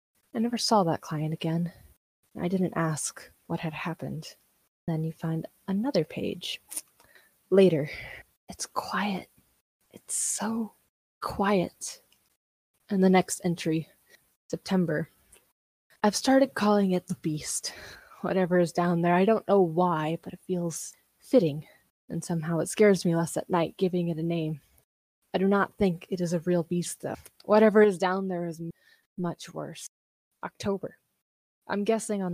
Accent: American